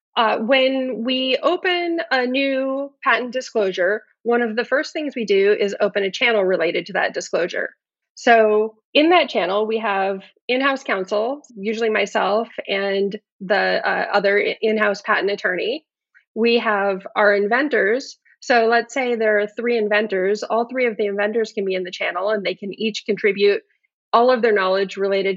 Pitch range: 200-240 Hz